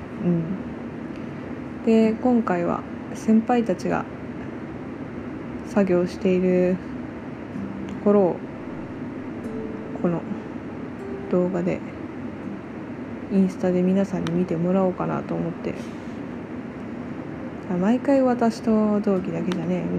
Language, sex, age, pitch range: Japanese, female, 20-39, 180-220 Hz